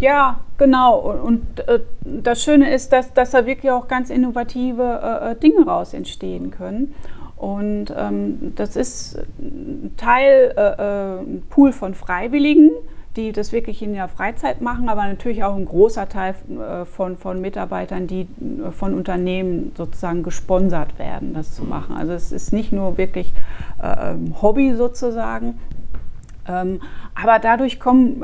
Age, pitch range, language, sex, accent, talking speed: 30-49, 190-255 Hz, German, female, German, 130 wpm